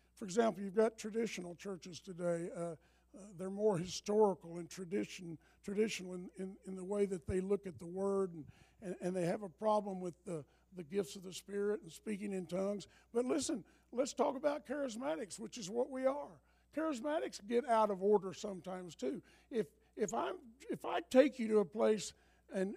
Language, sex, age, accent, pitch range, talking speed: English, male, 50-69, American, 175-225 Hz, 190 wpm